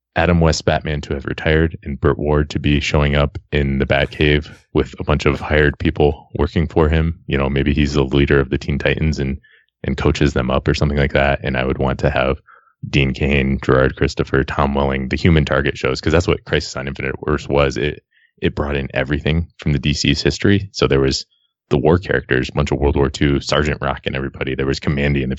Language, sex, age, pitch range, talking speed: English, male, 20-39, 70-80 Hz, 230 wpm